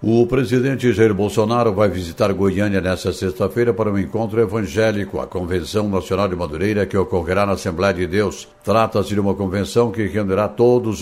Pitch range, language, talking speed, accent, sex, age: 95-115 Hz, Portuguese, 170 wpm, Brazilian, male, 60-79